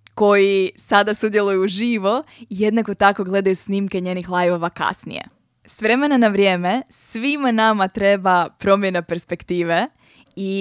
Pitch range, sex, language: 185-220 Hz, female, Croatian